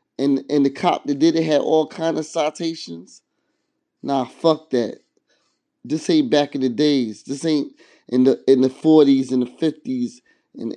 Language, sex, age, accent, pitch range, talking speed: English, male, 20-39, American, 135-155 Hz, 180 wpm